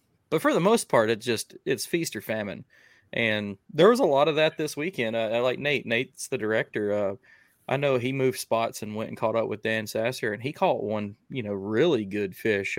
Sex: male